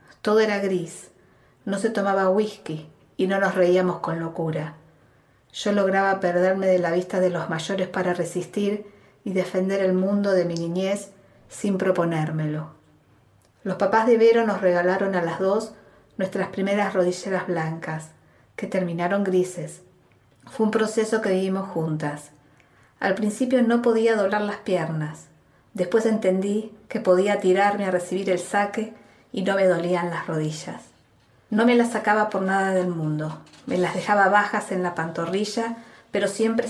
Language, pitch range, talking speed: Spanish, 170-205 Hz, 155 wpm